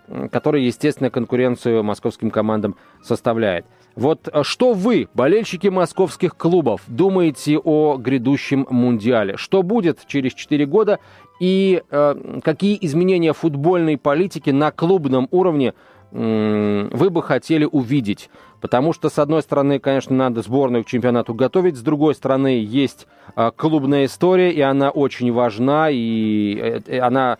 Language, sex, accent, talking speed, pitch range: Russian, male, native, 125 wpm, 115-155 Hz